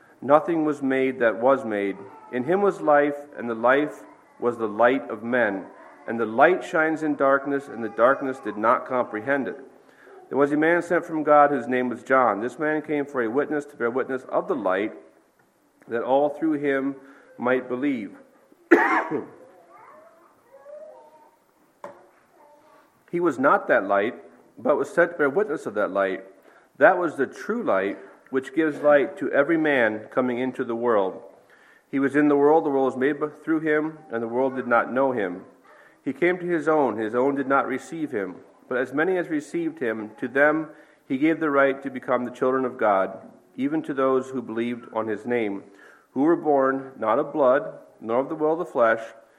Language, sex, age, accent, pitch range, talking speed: English, male, 50-69, American, 125-160 Hz, 190 wpm